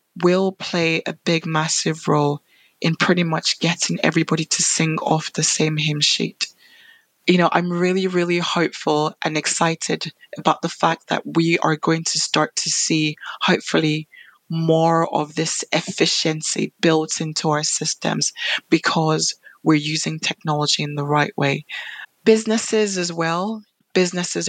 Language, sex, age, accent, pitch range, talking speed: English, female, 20-39, British, 155-180 Hz, 140 wpm